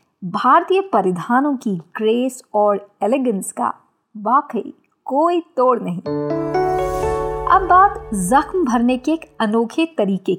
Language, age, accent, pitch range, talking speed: Hindi, 50-69, native, 225-335 Hz, 110 wpm